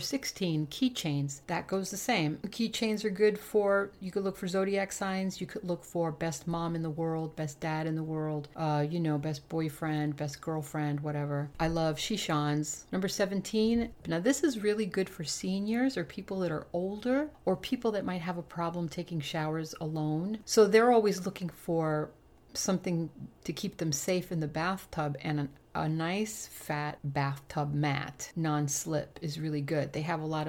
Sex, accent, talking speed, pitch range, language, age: female, American, 185 wpm, 150-195 Hz, English, 40-59